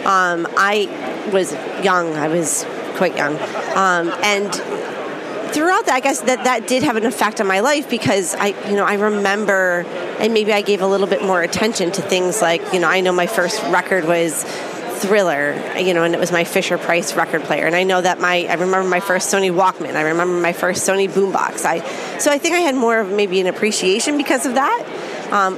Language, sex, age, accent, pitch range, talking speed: English, female, 30-49, American, 175-210 Hz, 215 wpm